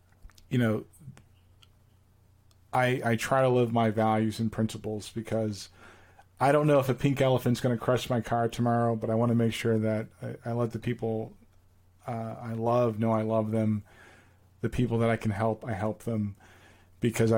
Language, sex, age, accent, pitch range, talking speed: English, male, 40-59, American, 110-125 Hz, 180 wpm